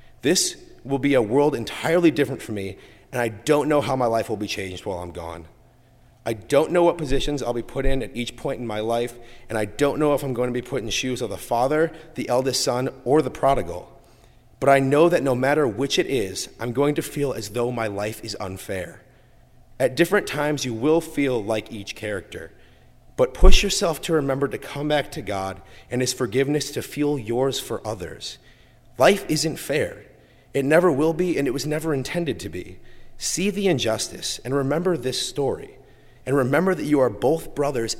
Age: 30-49